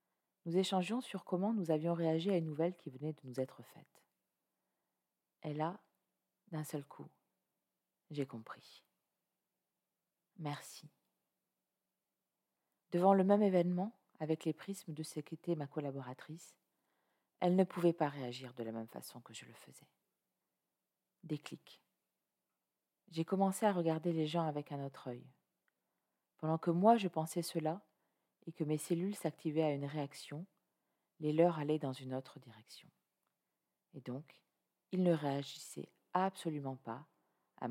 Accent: French